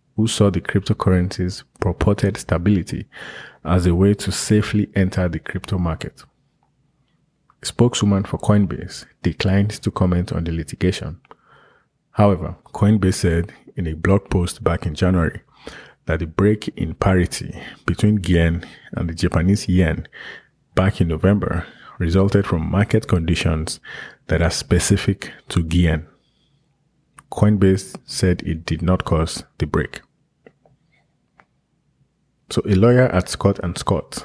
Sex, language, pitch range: male, English, 85-100 Hz